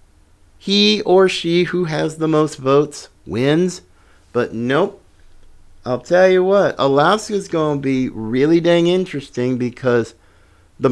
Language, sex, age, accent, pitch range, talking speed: English, male, 50-69, American, 120-185 Hz, 135 wpm